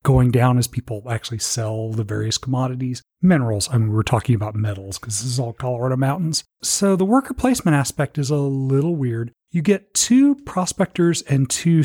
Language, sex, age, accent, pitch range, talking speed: English, male, 40-59, American, 115-145 Hz, 190 wpm